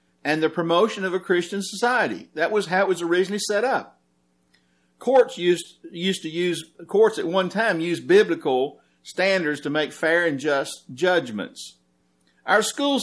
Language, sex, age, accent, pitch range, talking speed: English, male, 50-69, American, 150-215 Hz, 160 wpm